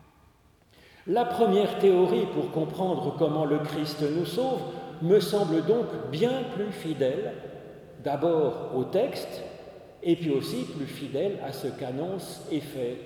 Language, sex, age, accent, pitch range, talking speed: French, male, 40-59, French, 150-200 Hz, 135 wpm